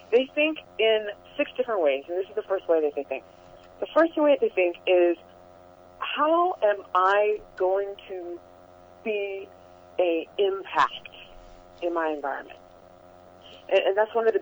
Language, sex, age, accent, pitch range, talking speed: English, female, 30-49, American, 165-265 Hz, 160 wpm